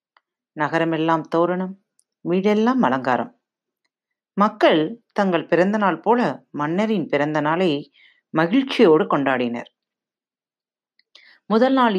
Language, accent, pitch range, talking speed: Tamil, native, 165-230 Hz, 80 wpm